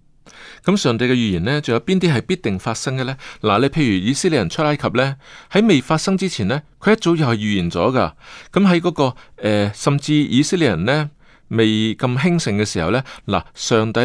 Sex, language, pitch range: male, Chinese, 105-150 Hz